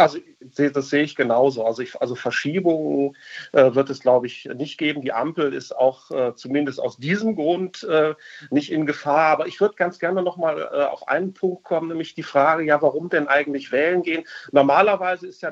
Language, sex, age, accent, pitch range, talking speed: German, male, 40-59, German, 140-175 Hz, 190 wpm